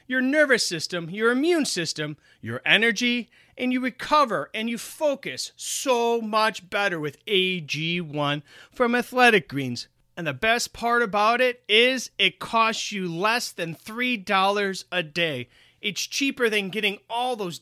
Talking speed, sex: 145 wpm, male